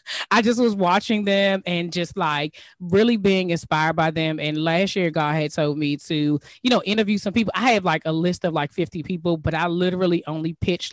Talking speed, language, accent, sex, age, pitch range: 220 wpm, English, American, female, 20-39, 160-195 Hz